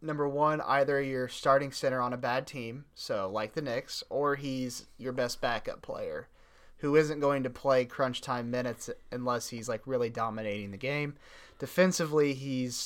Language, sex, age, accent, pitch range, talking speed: English, male, 30-49, American, 120-145 Hz, 175 wpm